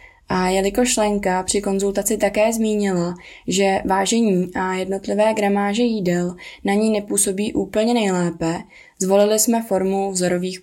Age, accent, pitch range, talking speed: 20-39, native, 185-210 Hz, 125 wpm